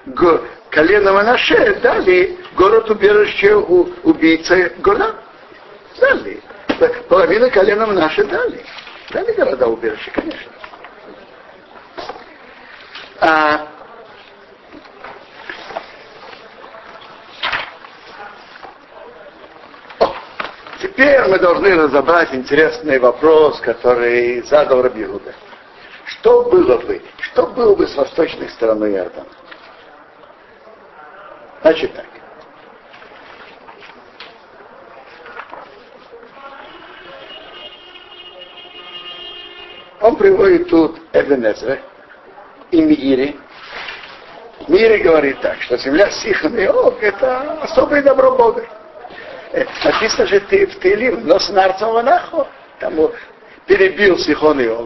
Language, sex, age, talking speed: Russian, male, 60-79, 75 wpm